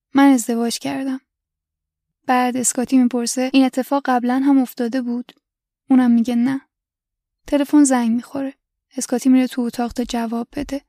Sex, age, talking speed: female, 10-29, 140 wpm